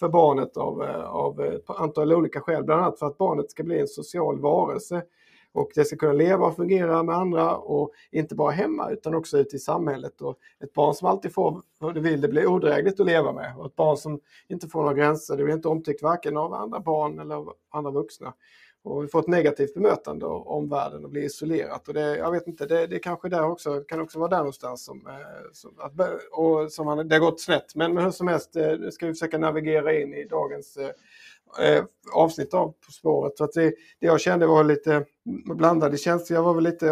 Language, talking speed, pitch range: Swedish, 225 wpm, 150-170 Hz